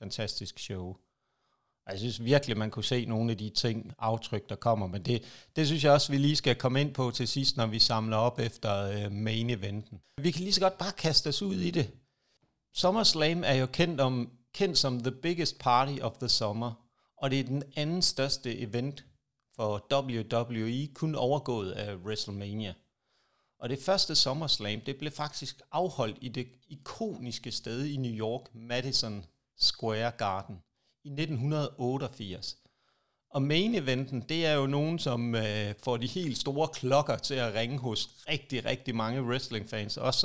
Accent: native